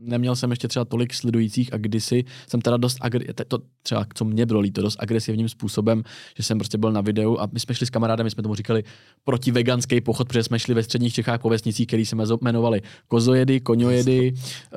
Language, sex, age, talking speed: Czech, male, 20-39, 210 wpm